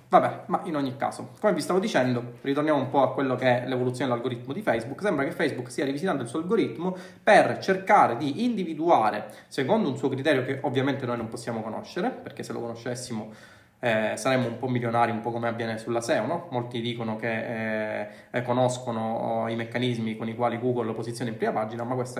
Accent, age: native, 20-39